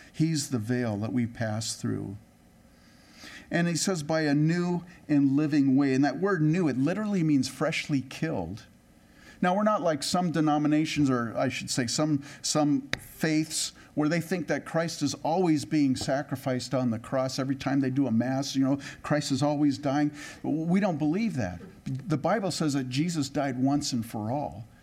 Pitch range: 125-160 Hz